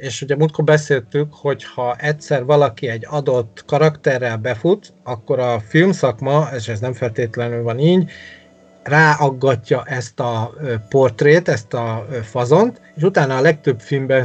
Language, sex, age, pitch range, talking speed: Hungarian, male, 30-49, 120-150 Hz, 140 wpm